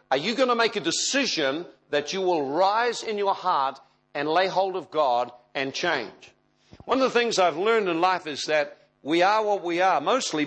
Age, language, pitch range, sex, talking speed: 60-79, English, 180-260 Hz, male, 210 wpm